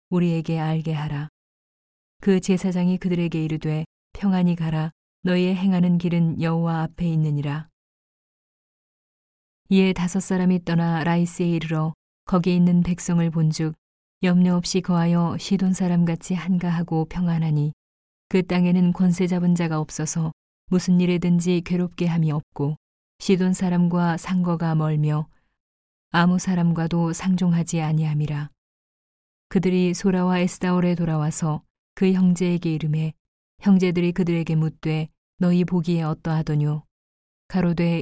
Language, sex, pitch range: Korean, female, 155-180 Hz